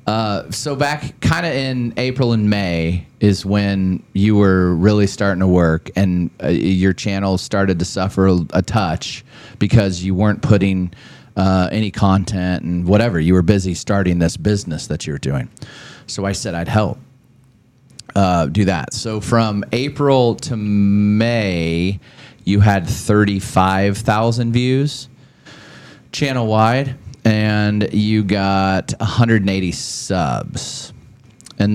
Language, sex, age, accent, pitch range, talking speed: English, male, 30-49, American, 95-125 Hz, 135 wpm